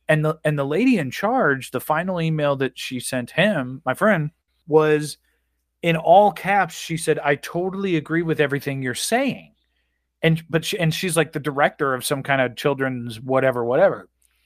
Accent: American